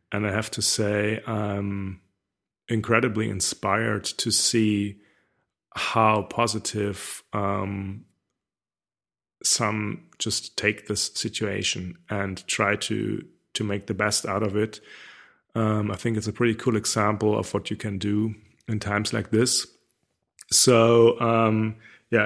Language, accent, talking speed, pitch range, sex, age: English, German, 130 wpm, 100-115 Hz, male, 30-49